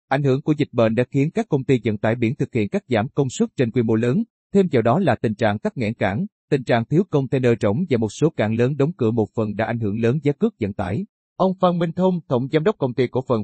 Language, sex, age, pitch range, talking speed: Vietnamese, male, 30-49, 110-145 Hz, 290 wpm